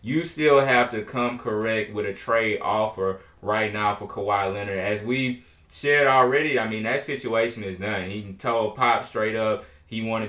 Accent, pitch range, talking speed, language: American, 105-120 Hz, 185 wpm, English